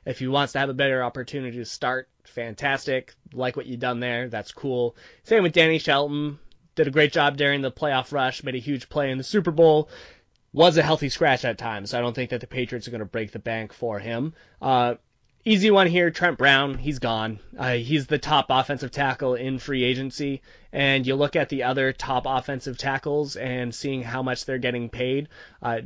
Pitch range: 120-145 Hz